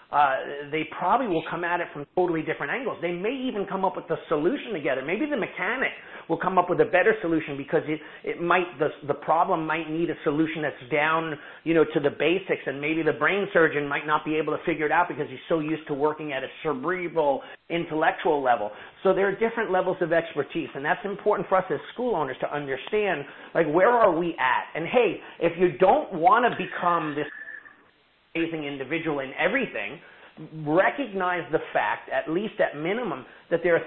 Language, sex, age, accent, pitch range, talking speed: English, male, 40-59, American, 155-180 Hz, 205 wpm